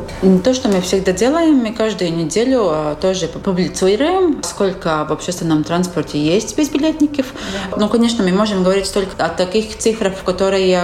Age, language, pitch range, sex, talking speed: 30-49, Russian, 170-215 Hz, female, 145 wpm